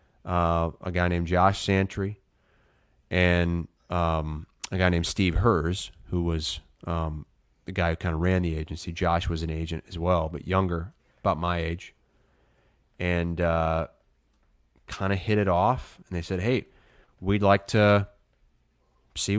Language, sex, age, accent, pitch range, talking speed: English, male, 30-49, American, 80-100 Hz, 155 wpm